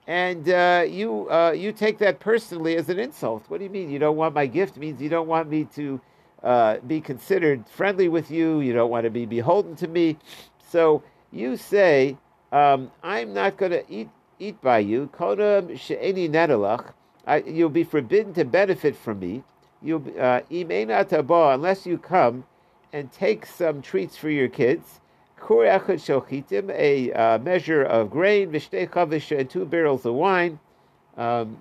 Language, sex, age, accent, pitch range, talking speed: English, male, 50-69, American, 135-175 Hz, 160 wpm